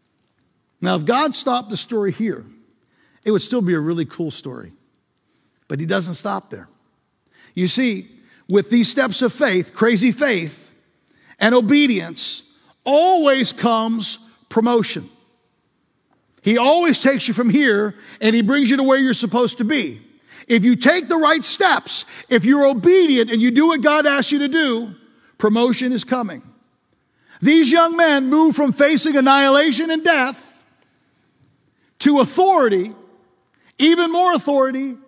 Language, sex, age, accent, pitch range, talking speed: English, male, 50-69, American, 185-275 Hz, 145 wpm